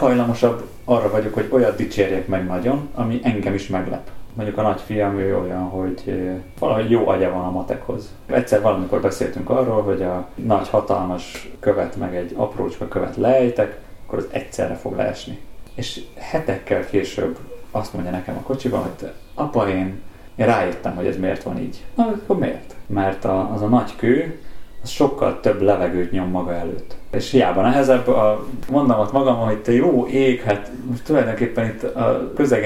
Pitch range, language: 95-125 Hz, Hungarian